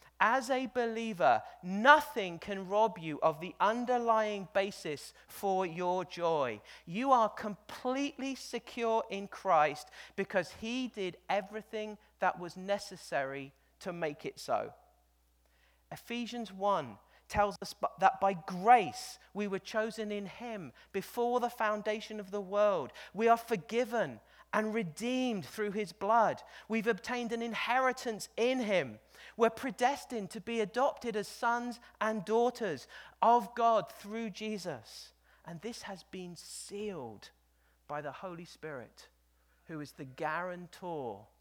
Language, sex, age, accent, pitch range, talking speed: English, male, 40-59, British, 145-225 Hz, 130 wpm